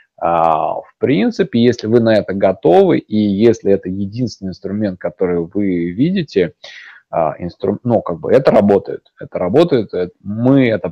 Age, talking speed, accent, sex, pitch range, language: 30-49, 145 wpm, native, male, 100-130 Hz, Russian